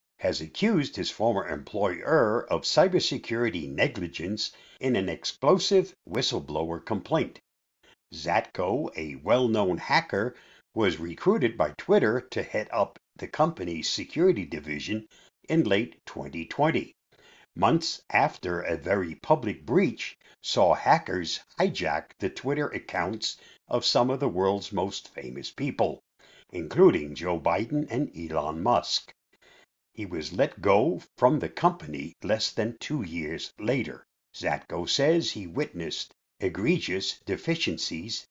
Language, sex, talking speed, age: English, male, 115 wpm, 60-79